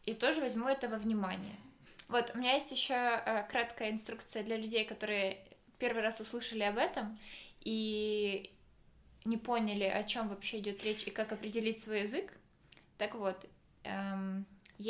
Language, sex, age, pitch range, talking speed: Ukrainian, female, 20-39, 205-230 Hz, 155 wpm